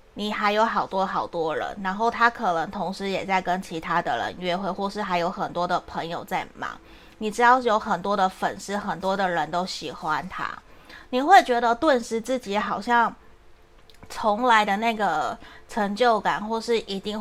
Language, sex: Chinese, female